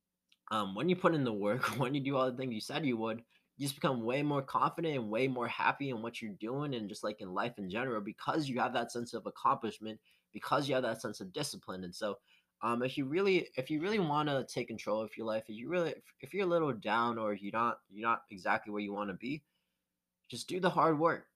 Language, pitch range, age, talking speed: English, 105-140 Hz, 20-39, 260 wpm